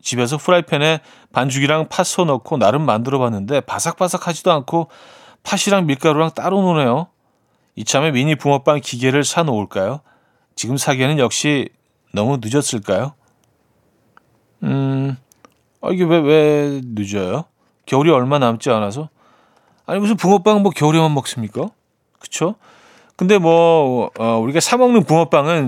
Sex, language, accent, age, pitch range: male, Korean, native, 40-59, 115-165 Hz